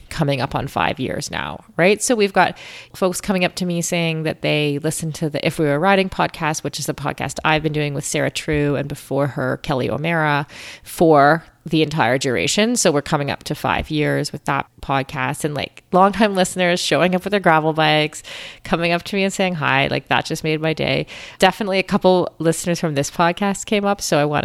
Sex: female